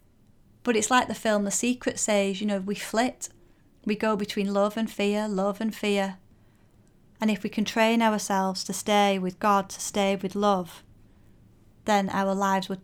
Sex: female